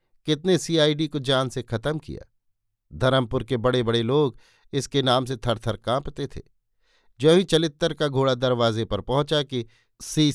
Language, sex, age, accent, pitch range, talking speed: Hindi, male, 50-69, native, 115-145 Hz, 170 wpm